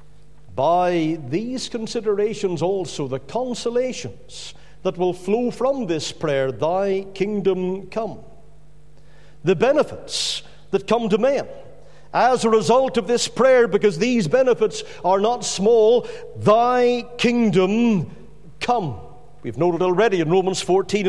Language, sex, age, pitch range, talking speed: English, male, 50-69, 195-260 Hz, 120 wpm